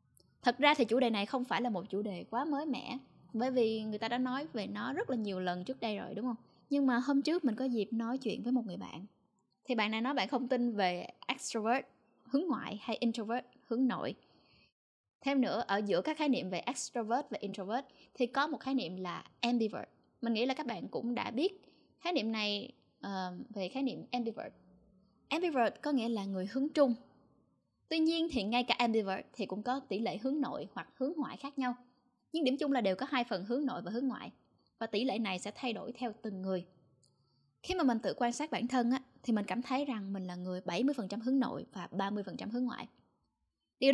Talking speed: 230 wpm